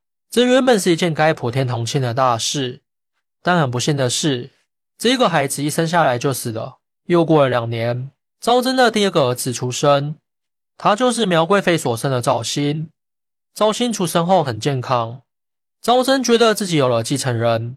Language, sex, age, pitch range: Chinese, male, 20-39, 125-180 Hz